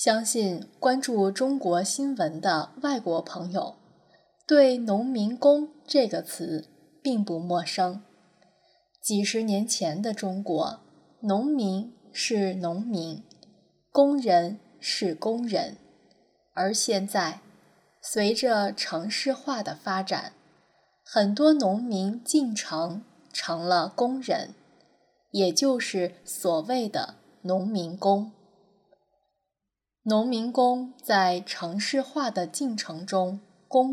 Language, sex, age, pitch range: Chinese, female, 20-39, 185-250 Hz